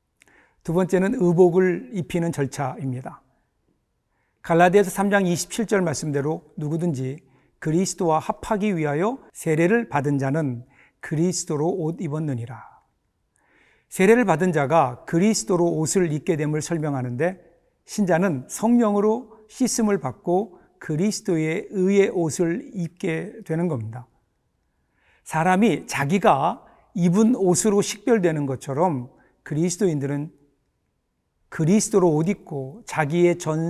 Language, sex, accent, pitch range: Korean, male, native, 150-195 Hz